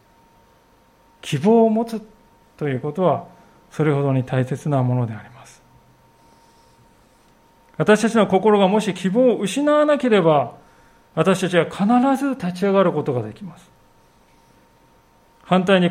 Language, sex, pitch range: Japanese, male, 155-210 Hz